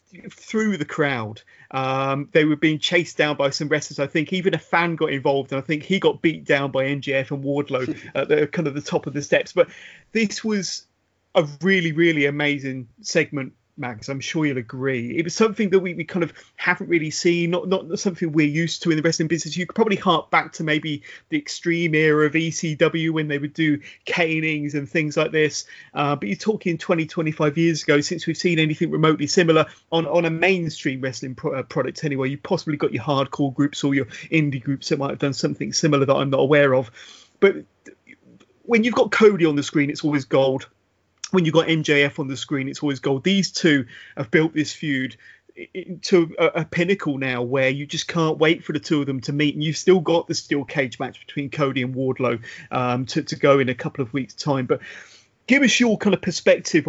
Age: 30-49